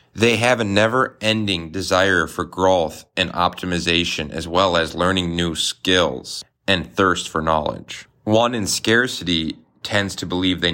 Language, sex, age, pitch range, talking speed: English, male, 30-49, 85-100 Hz, 145 wpm